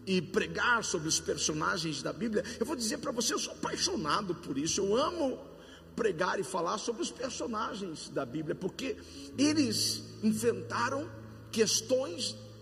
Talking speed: 145 wpm